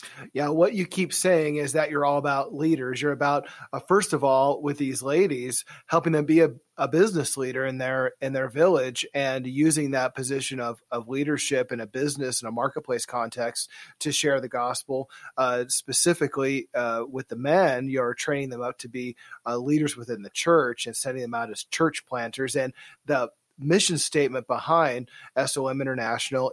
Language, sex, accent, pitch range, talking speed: English, male, American, 125-150 Hz, 185 wpm